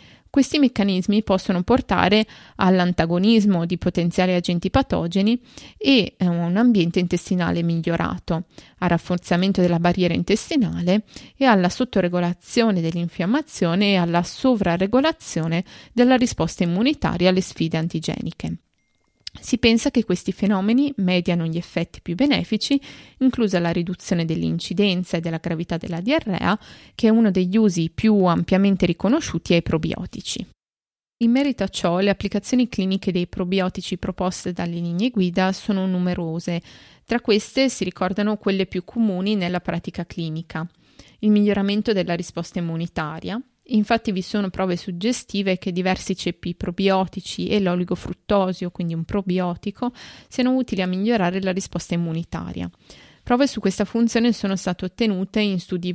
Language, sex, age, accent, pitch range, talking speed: Italian, female, 20-39, native, 175-215 Hz, 130 wpm